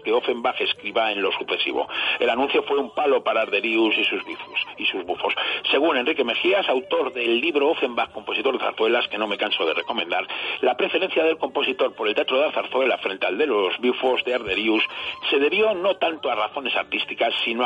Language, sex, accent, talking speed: Spanish, male, Spanish, 195 wpm